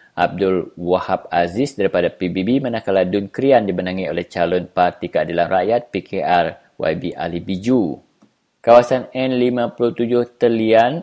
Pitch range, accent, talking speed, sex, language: 90-110 Hz, Indonesian, 115 wpm, male, English